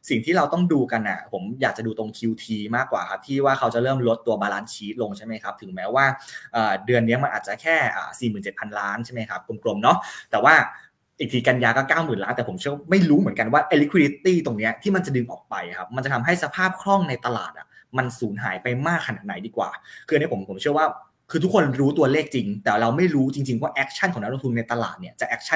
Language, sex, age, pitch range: Thai, male, 20-39, 115-150 Hz